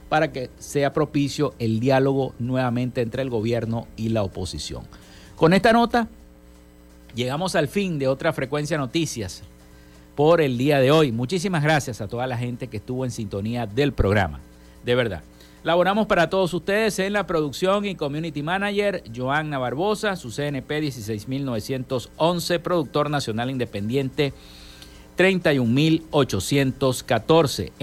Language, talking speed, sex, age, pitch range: Spanish, 130 wpm, male, 50-69, 120-165 Hz